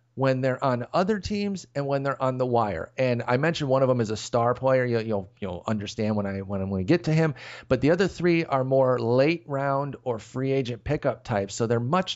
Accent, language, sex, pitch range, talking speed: American, English, male, 110-135 Hz, 240 wpm